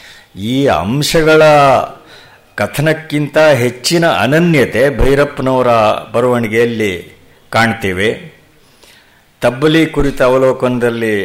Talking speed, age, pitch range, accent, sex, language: 60 wpm, 50-69, 115-145 Hz, native, male, Kannada